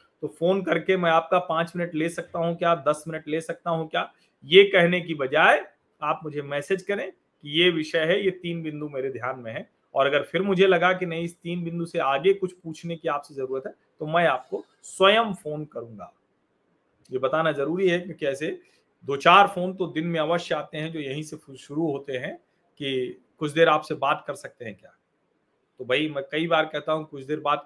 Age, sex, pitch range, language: 40-59, male, 140-170 Hz, Hindi